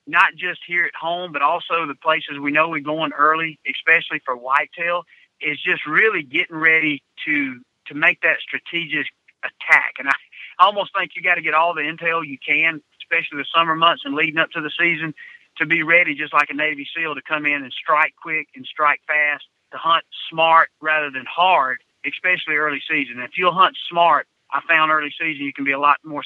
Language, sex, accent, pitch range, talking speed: English, male, American, 145-175 Hz, 210 wpm